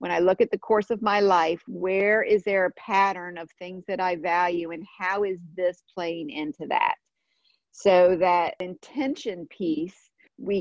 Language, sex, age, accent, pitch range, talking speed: English, female, 40-59, American, 180-240 Hz, 175 wpm